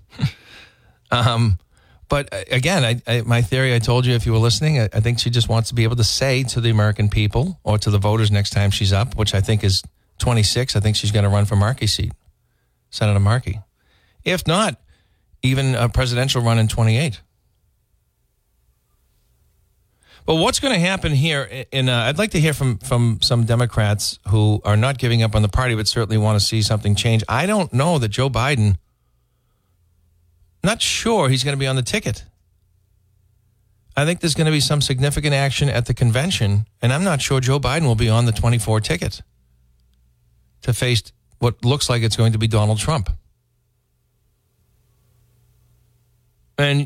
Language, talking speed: English, 185 wpm